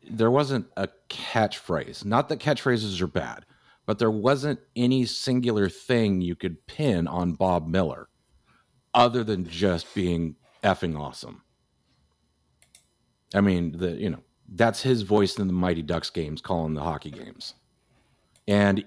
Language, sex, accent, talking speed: English, male, American, 145 wpm